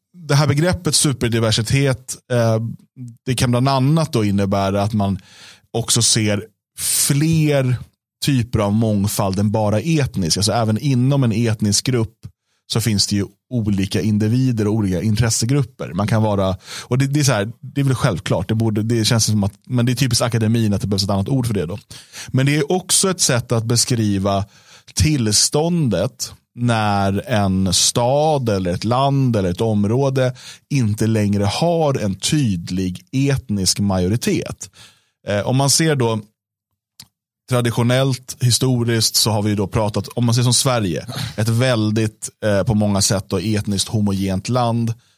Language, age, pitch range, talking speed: Swedish, 30-49, 100-130 Hz, 160 wpm